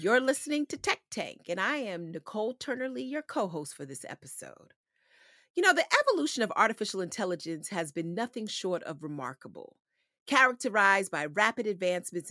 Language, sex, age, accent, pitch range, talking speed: English, female, 40-59, American, 175-270 Hz, 155 wpm